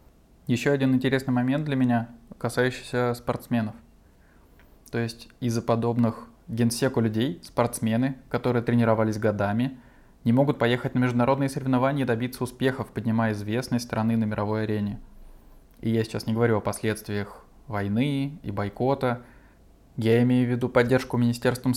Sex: male